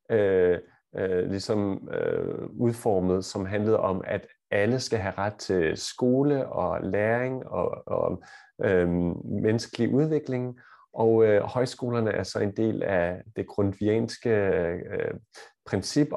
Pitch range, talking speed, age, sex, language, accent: 90-115 Hz, 125 wpm, 30-49, male, Danish, native